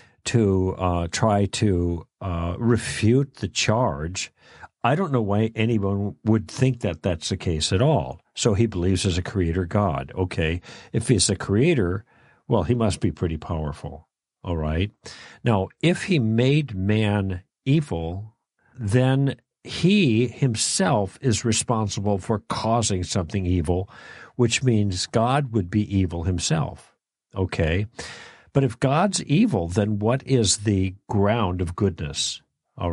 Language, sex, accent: English, male, American